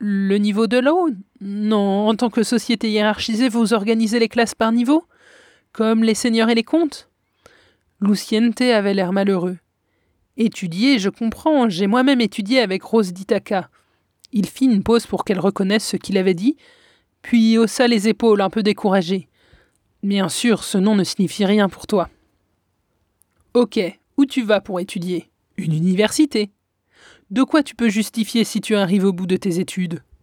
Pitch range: 195-235 Hz